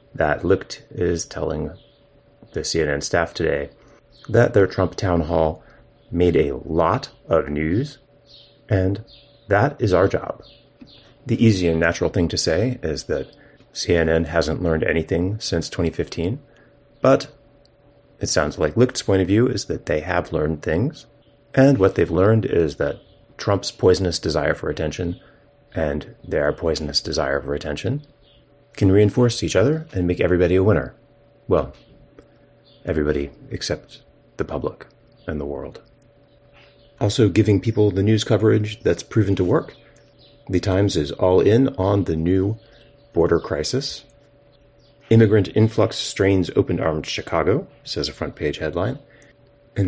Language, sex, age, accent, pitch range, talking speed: English, male, 30-49, American, 90-140 Hz, 140 wpm